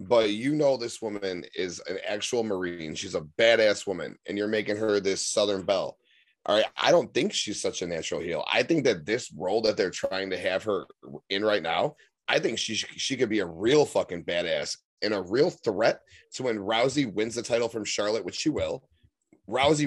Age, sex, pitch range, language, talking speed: 30-49, male, 95-125 Hz, English, 210 wpm